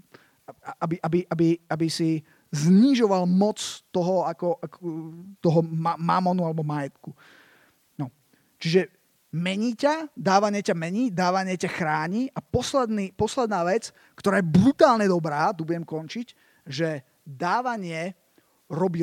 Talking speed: 125 wpm